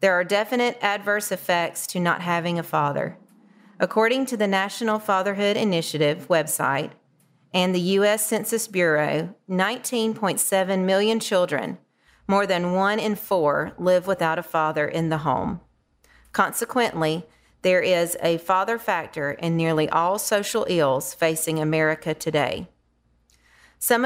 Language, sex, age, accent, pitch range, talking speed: English, female, 40-59, American, 160-205 Hz, 130 wpm